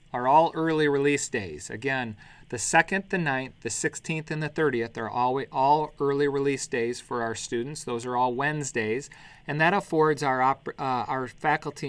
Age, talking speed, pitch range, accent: 40-59, 170 wpm, 120-145 Hz, American